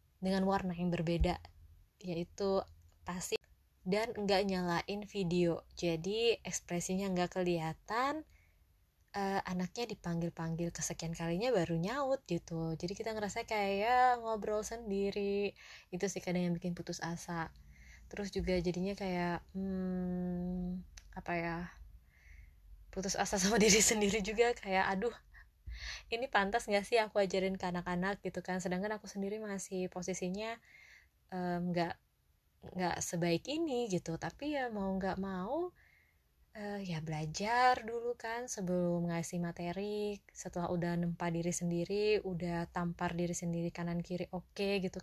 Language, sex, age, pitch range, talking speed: Indonesian, female, 20-39, 175-205 Hz, 130 wpm